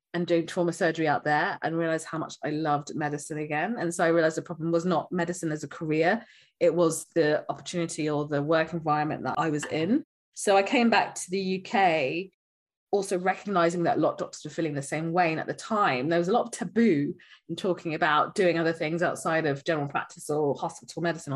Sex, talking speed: female, 225 wpm